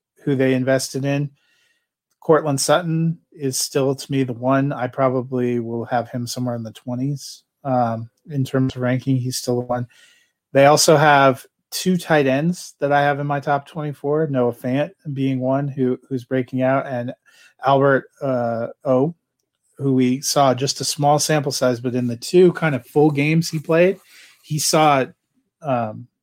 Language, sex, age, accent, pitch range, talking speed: English, male, 30-49, American, 125-145 Hz, 170 wpm